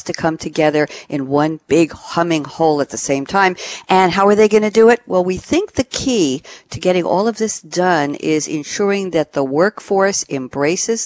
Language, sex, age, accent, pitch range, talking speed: English, female, 50-69, American, 145-190 Hz, 200 wpm